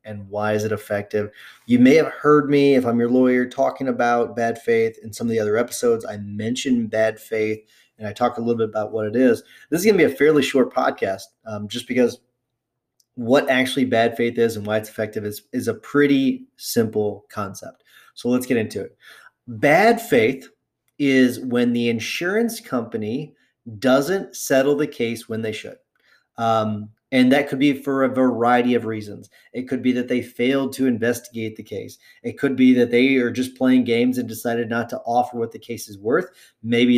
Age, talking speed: 30-49, 200 wpm